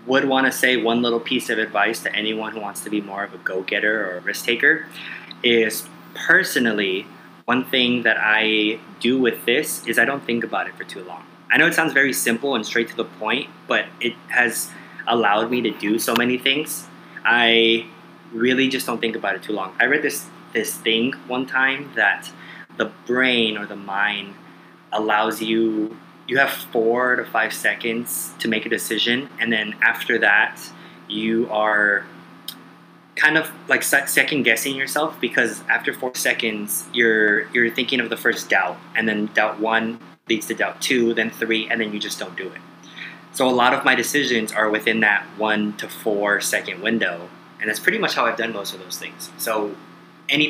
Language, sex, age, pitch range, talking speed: English, male, 20-39, 105-125 Hz, 195 wpm